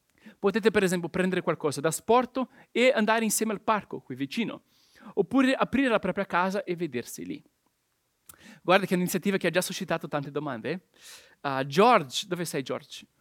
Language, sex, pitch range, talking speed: Italian, male, 175-235 Hz, 175 wpm